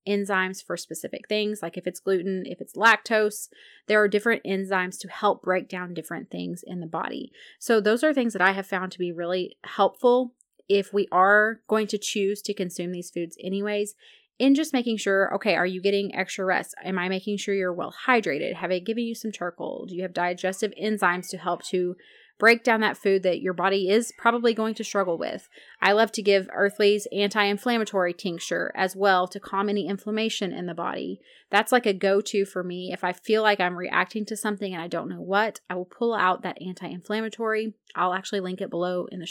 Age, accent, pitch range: 30-49, American, 180-220 Hz